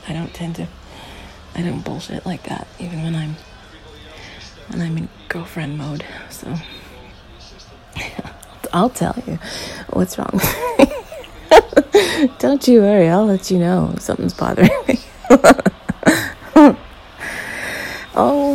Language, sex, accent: English, female, American